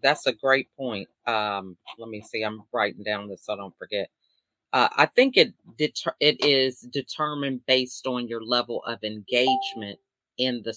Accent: American